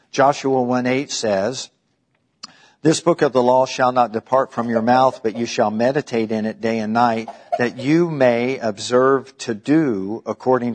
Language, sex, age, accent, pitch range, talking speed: English, male, 50-69, American, 115-140 Hz, 175 wpm